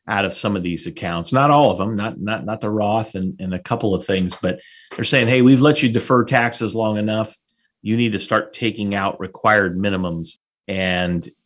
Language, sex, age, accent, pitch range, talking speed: English, male, 30-49, American, 90-120 Hz, 215 wpm